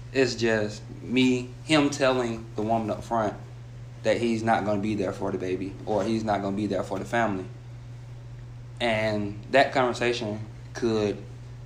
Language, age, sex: English, 20-39, male